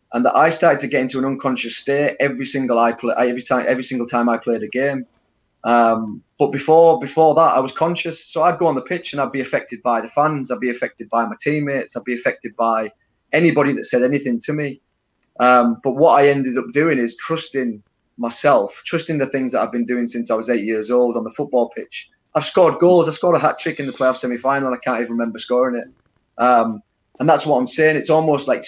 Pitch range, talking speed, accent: 120-145 Hz, 240 wpm, British